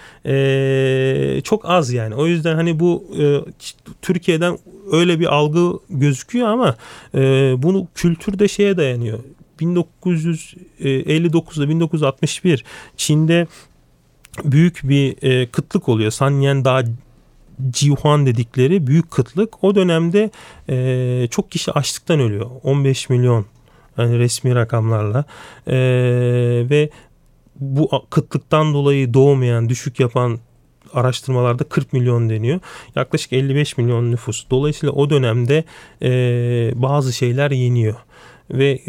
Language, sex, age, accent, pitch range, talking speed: Turkish, male, 40-59, native, 120-150 Hz, 110 wpm